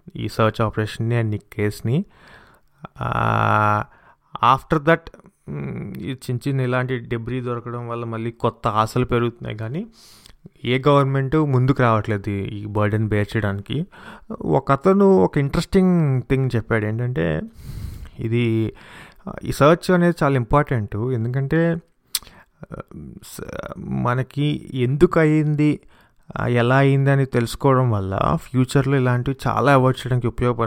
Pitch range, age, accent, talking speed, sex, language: 110-135 Hz, 30-49, Indian, 60 wpm, male, English